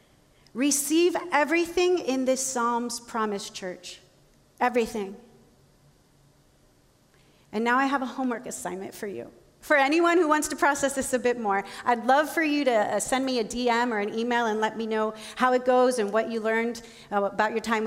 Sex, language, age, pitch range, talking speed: female, English, 40-59, 220-280 Hz, 180 wpm